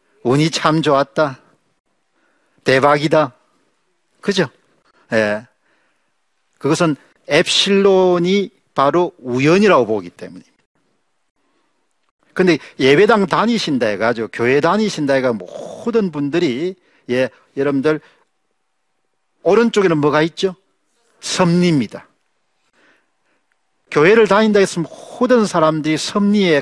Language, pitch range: Korean, 125-185 Hz